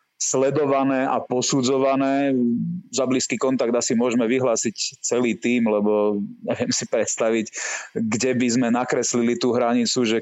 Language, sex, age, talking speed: Slovak, male, 30-49, 130 wpm